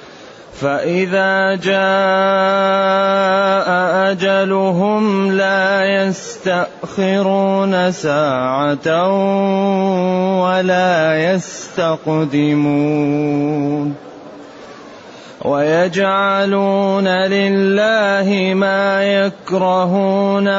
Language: Arabic